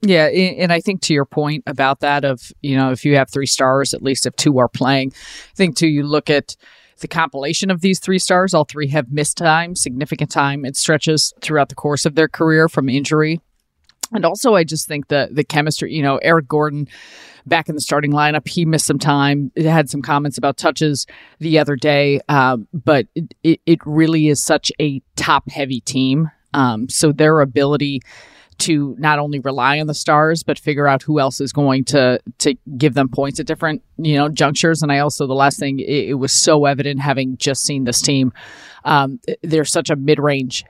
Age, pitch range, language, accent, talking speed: 30-49, 140-155 Hz, English, American, 210 wpm